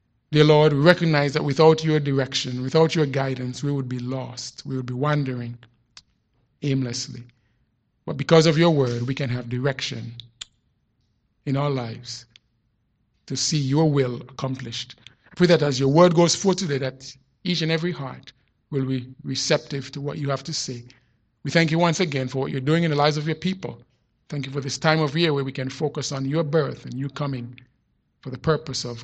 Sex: male